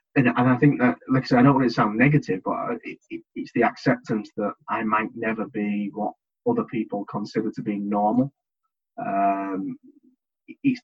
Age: 20-39